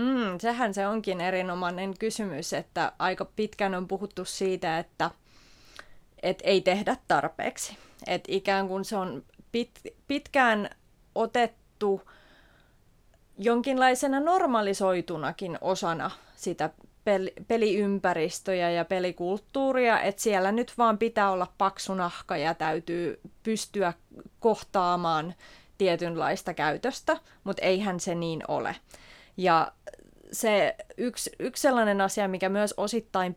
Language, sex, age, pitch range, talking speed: English, female, 30-49, 170-205 Hz, 105 wpm